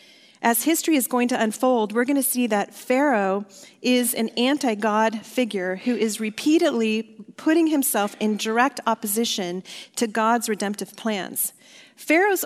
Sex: female